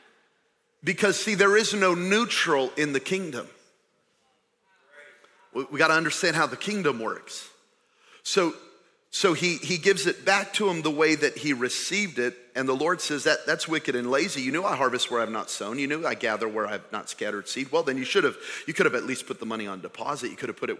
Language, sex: English, male